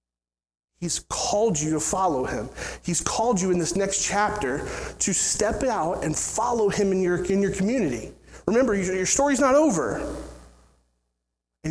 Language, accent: English, American